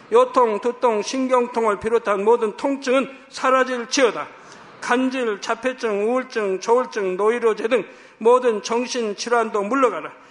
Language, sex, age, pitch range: Korean, male, 50-69, 220-255 Hz